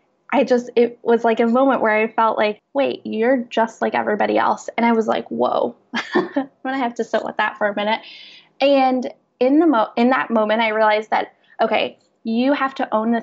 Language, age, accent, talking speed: English, 10-29, American, 215 wpm